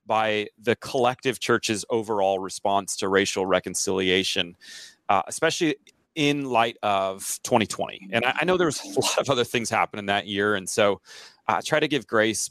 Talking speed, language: 175 wpm, English